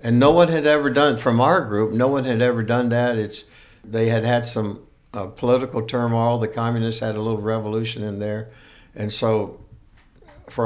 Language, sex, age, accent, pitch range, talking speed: English, male, 60-79, American, 110-125 Hz, 190 wpm